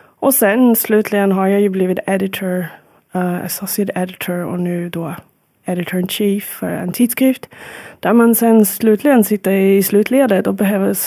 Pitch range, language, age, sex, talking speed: 180-210 Hz, Swedish, 20-39, female, 150 wpm